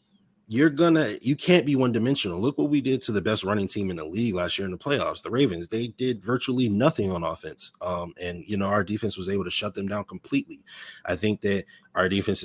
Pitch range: 90-110 Hz